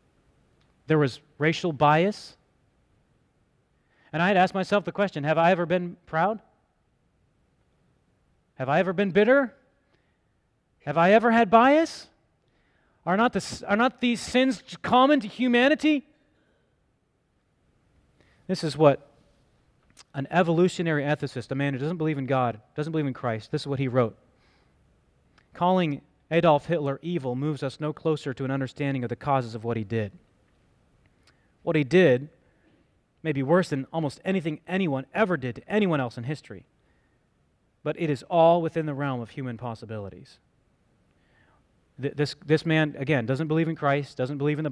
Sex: male